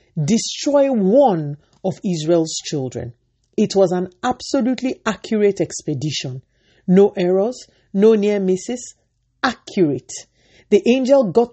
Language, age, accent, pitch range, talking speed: English, 50-69, Nigerian, 145-200 Hz, 105 wpm